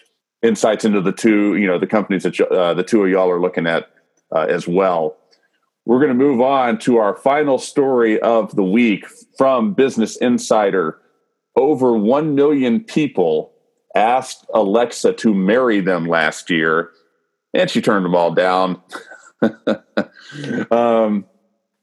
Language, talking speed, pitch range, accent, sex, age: English, 145 wpm, 100-130 Hz, American, male, 40-59